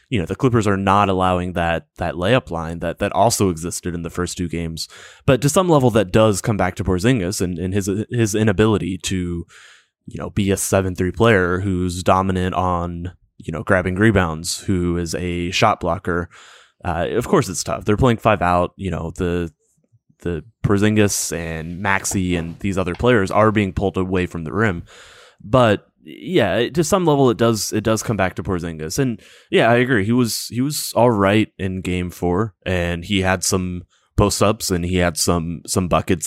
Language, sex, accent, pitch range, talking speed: English, male, American, 90-105 Hz, 195 wpm